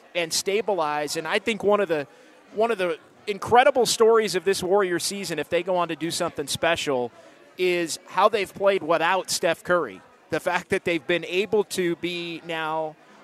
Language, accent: English, American